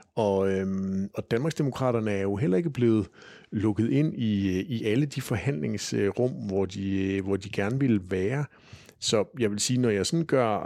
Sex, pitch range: male, 95-120 Hz